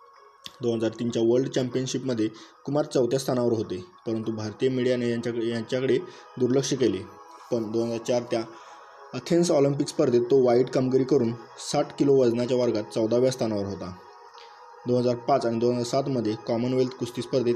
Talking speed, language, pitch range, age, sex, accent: 140 wpm, Marathi, 115-135 Hz, 20-39, male, native